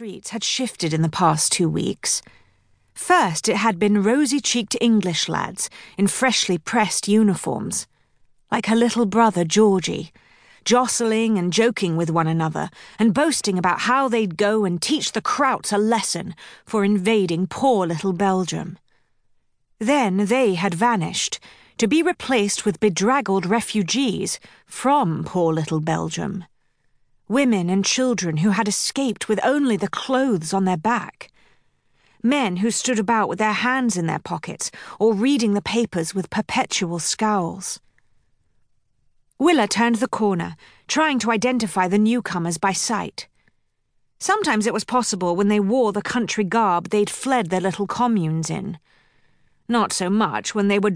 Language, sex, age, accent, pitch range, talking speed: English, female, 40-59, British, 185-235 Hz, 145 wpm